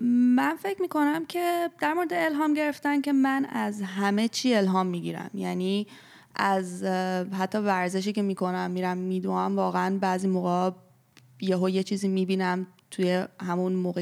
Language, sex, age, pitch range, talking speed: Persian, female, 20-39, 180-225 Hz, 160 wpm